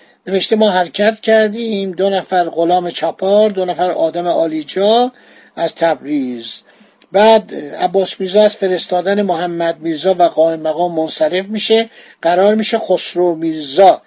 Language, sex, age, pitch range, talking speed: Persian, male, 50-69, 170-210 Hz, 130 wpm